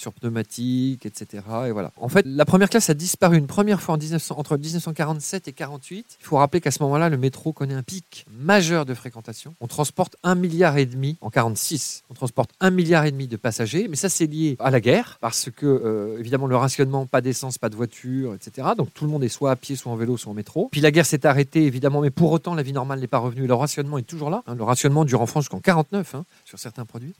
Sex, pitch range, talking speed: male, 125-170 Hz, 255 wpm